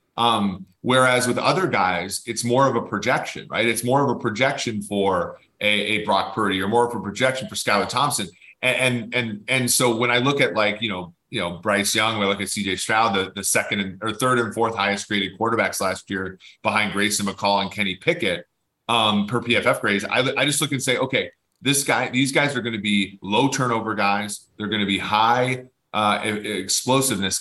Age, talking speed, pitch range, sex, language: 30-49, 215 wpm, 100-120 Hz, male, English